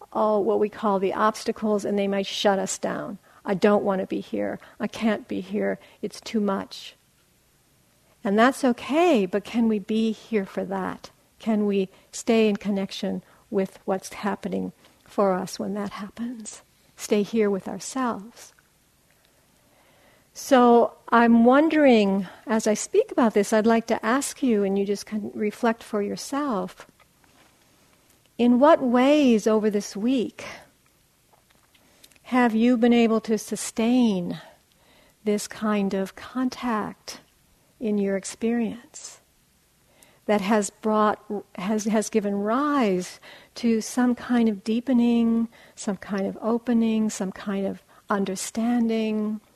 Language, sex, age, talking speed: English, female, 50-69, 135 wpm